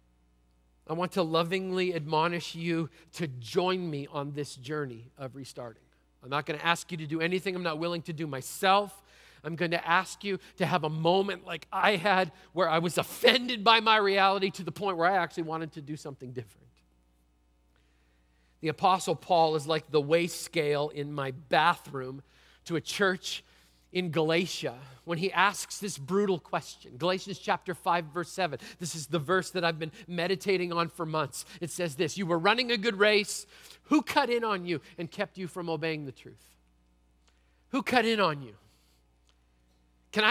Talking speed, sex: 185 wpm, male